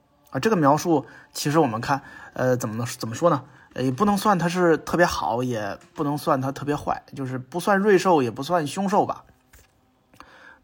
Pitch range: 130-165 Hz